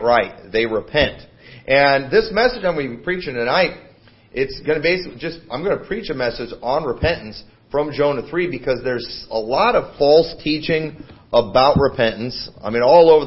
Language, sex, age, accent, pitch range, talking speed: English, male, 40-59, American, 120-150 Hz, 180 wpm